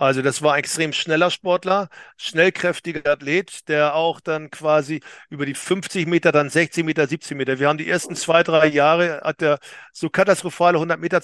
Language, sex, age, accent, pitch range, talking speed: German, male, 40-59, German, 145-170 Hz, 185 wpm